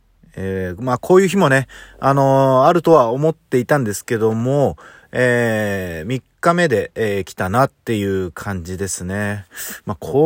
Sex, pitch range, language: male, 110-155 Hz, Japanese